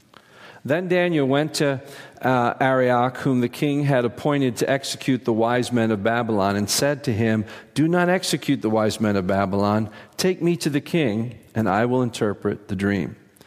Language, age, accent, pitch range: English, 50-69, American, 110-145 Hz